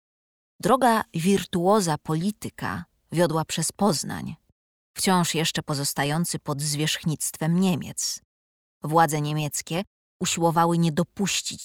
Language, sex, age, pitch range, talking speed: Polish, female, 20-39, 150-195 Hz, 90 wpm